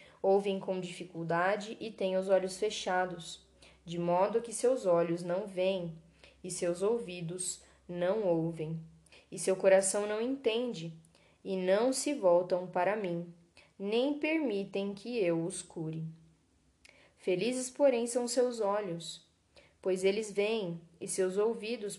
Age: 10-29